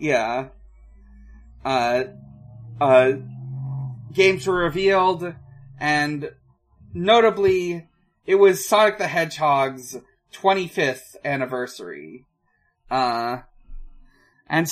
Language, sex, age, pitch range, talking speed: English, male, 30-49, 130-175 Hz, 75 wpm